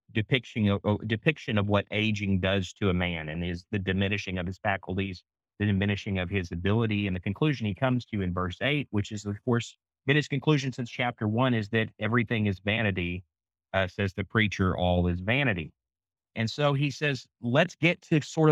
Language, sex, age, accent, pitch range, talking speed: English, male, 30-49, American, 95-115 Hz, 190 wpm